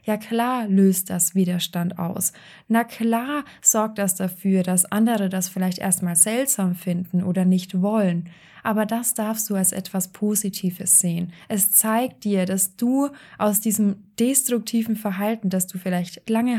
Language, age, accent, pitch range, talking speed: German, 20-39, German, 185-220 Hz, 150 wpm